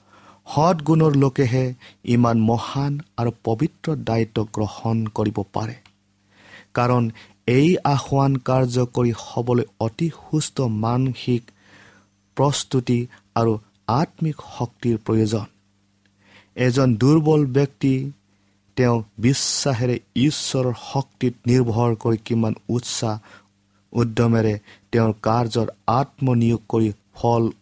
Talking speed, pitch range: 85 wpm, 105-130 Hz